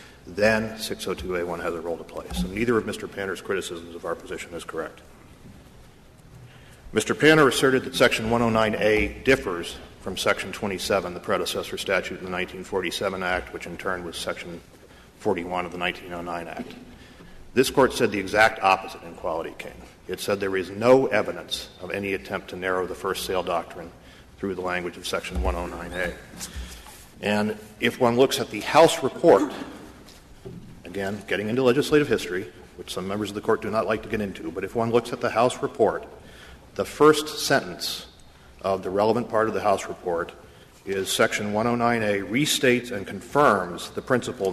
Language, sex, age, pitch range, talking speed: English, male, 40-59, 90-110 Hz, 170 wpm